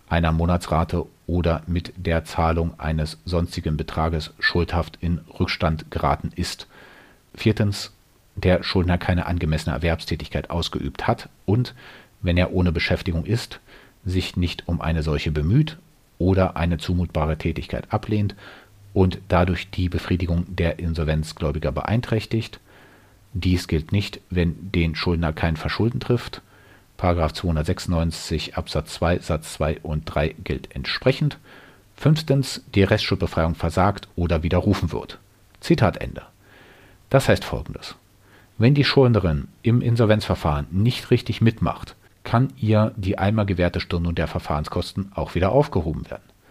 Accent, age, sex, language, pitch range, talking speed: German, 40-59, male, German, 85-105 Hz, 125 wpm